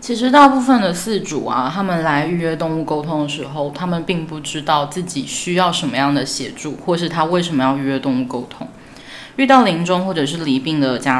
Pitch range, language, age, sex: 145-175 Hz, Chinese, 20-39, female